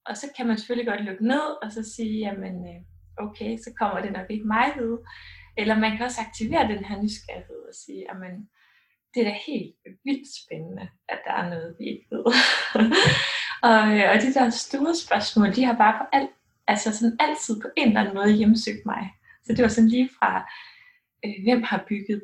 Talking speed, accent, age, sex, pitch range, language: 195 wpm, native, 20-39, female, 195-240 Hz, Danish